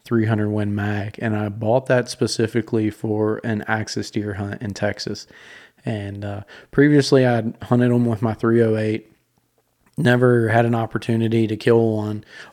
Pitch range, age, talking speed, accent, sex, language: 105-115 Hz, 20-39, 150 wpm, American, male, English